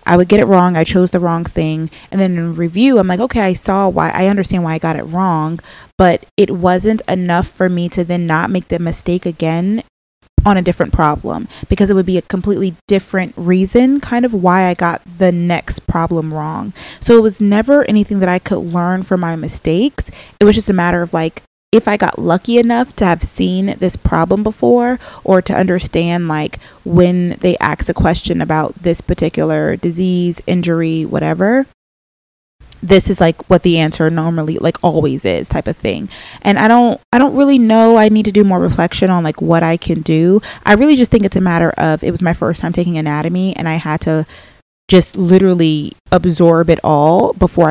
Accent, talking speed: American, 205 wpm